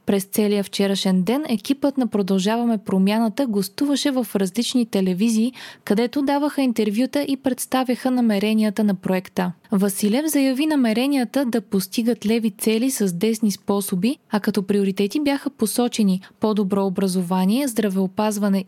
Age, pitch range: 20-39, 200-255 Hz